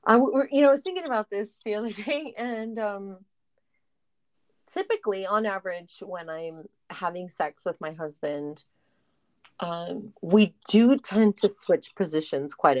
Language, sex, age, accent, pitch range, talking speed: English, female, 30-49, American, 165-245 Hz, 140 wpm